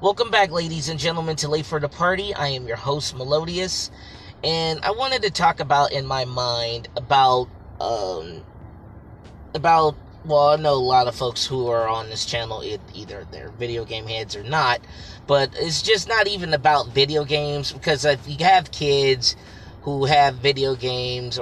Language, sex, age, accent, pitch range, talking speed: English, male, 20-39, American, 110-140 Hz, 175 wpm